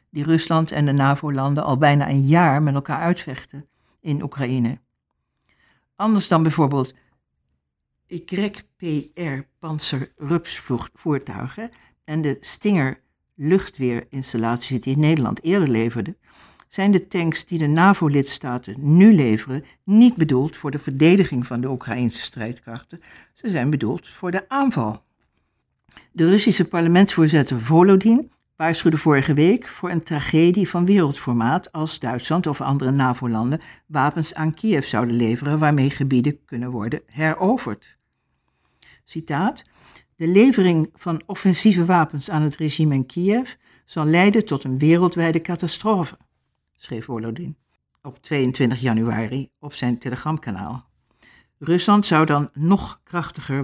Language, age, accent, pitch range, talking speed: Dutch, 60-79, Dutch, 130-170 Hz, 115 wpm